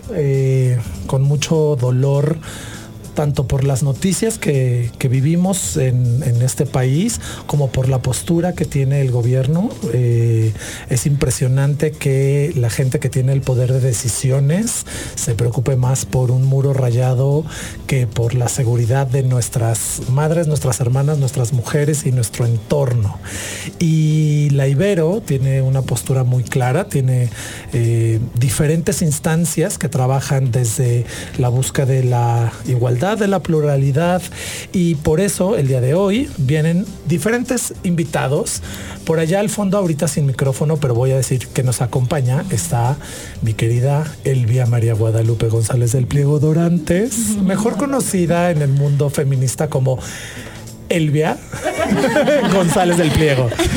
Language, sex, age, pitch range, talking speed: Spanish, male, 40-59, 125-165 Hz, 140 wpm